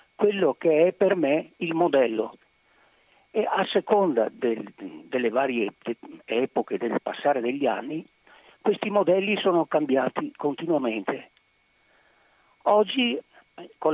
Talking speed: 110 wpm